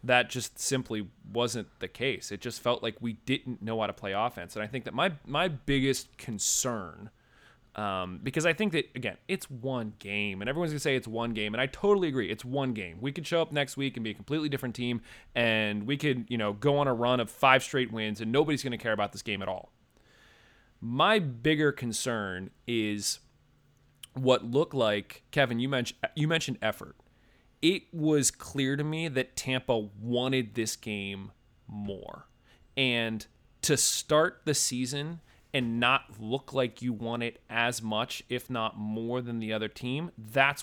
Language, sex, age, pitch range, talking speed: English, male, 20-39, 110-135 Hz, 190 wpm